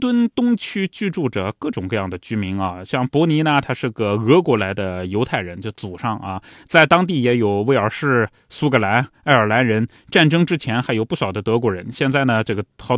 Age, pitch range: 20-39, 110-160 Hz